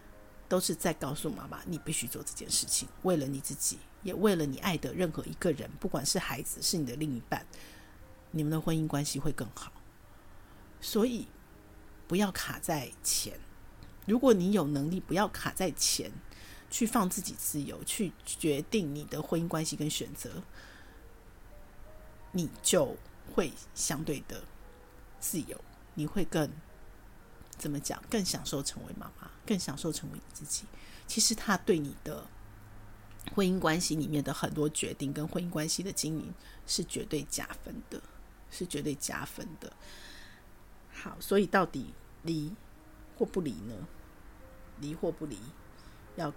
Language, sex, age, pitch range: Chinese, female, 50-69, 105-165 Hz